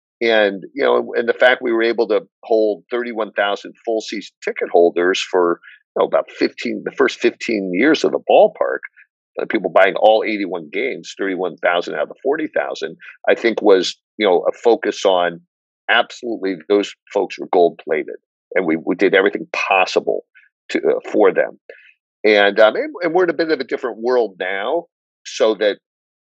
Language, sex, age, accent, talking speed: English, male, 50-69, American, 185 wpm